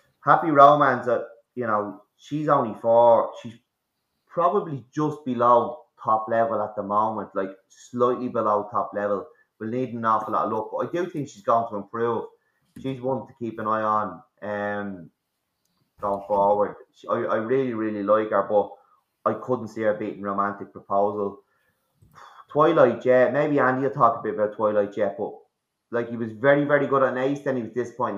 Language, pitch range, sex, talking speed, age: English, 100-120 Hz, male, 185 wpm, 20-39